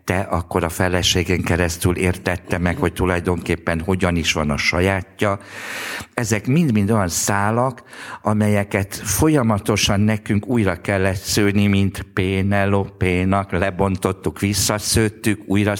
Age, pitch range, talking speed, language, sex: 60-79, 90-105 Hz, 115 wpm, Hungarian, male